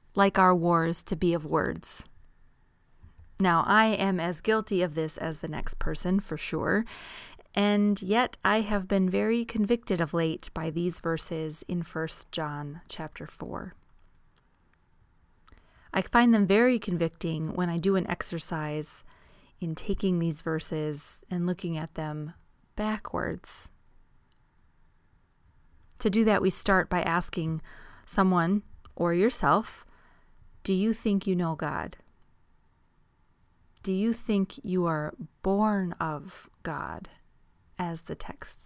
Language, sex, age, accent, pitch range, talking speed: English, female, 30-49, American, 155-200 Hz, 130 wpm